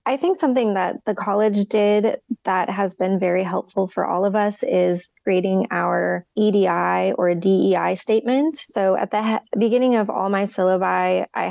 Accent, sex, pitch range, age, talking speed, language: American, female, 185-225 Hz, 20-39, 165 wpm, English